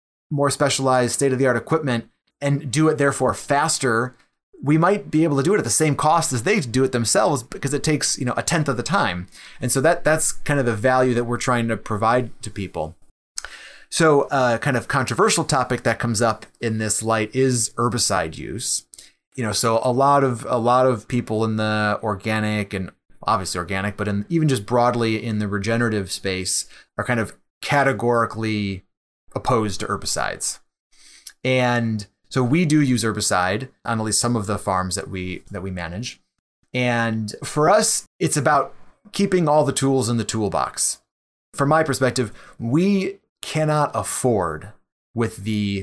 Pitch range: 100-135 Hz